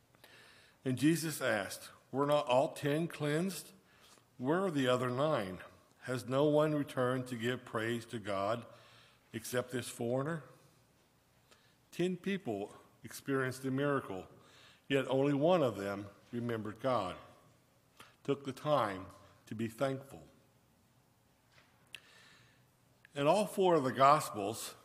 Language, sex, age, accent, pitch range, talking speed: English, male, 60-79, American, 120-155 Hz, 120 wpm